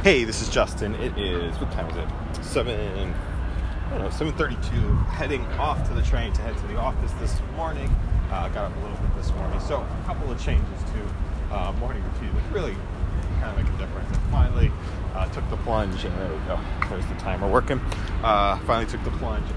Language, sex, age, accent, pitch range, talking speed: English, male, 30-49, American, 80-95 Hz, 215 wpm